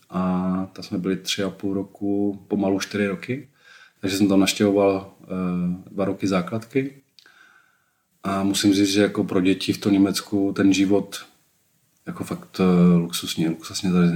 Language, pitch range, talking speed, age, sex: Czech, 95-110 Hz, 145 wpm, 30-49, male